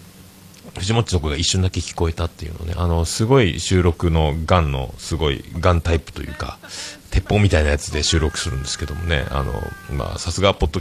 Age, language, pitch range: 40-59, Japanese, 80-100 Hz